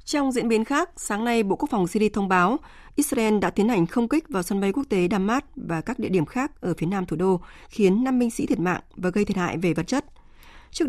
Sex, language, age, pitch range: female, Vietnamese, 20-39, 185-230 Hz